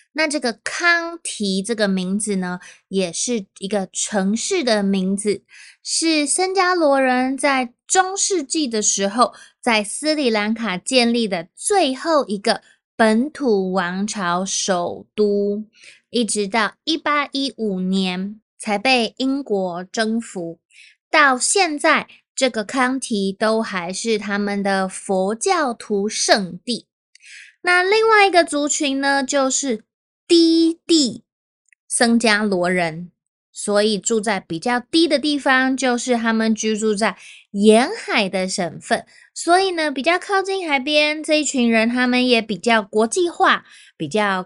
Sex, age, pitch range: female, 20-39, 210-295 Hz